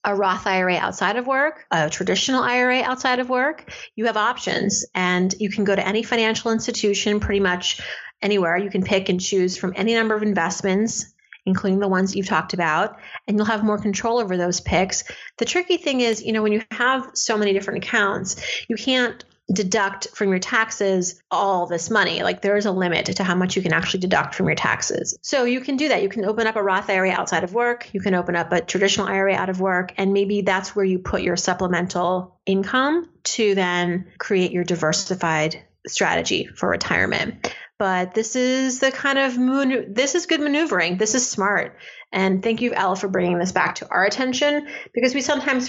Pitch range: 185-235 Hz